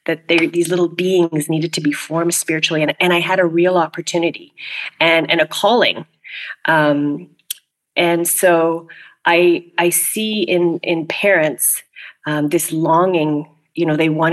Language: English